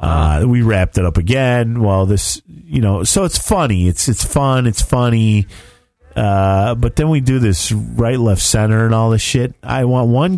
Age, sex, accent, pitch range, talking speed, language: 40-59, male, American, 90-125 Hz, 195 wpm, English